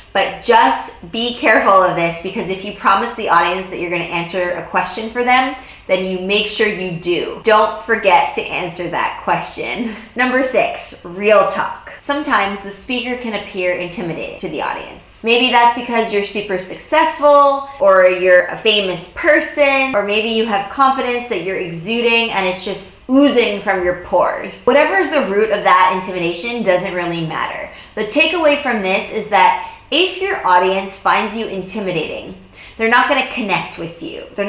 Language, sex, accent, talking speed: English, female, American, 175 wpm